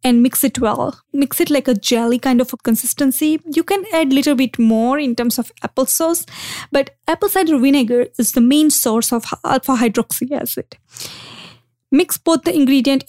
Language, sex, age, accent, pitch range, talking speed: English, female, 20-39, Indian, 230-275 Hz, 190 wpm